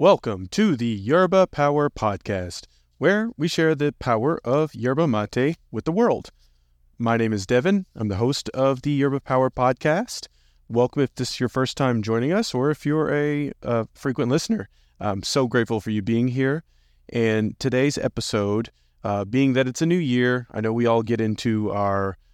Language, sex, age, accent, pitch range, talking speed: English, male, 30-49, American, 100-130 Hz, 185 wpm